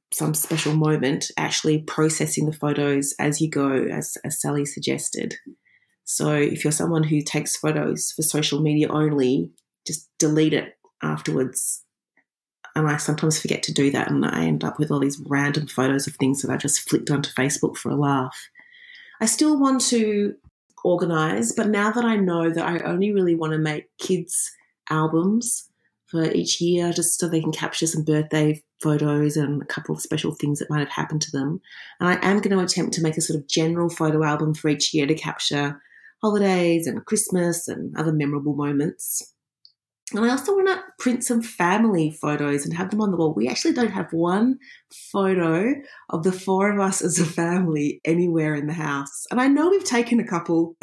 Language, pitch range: English, 150-200 Hz